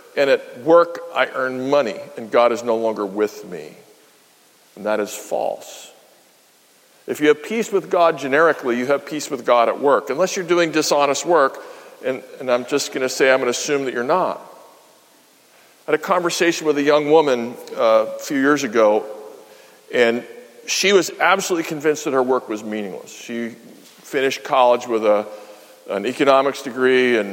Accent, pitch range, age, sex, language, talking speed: American, 120-170 Hz, 50-69, male, English, 180 wpm